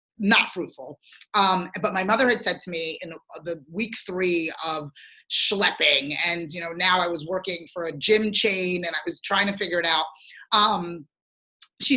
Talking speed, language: 190 wpm, English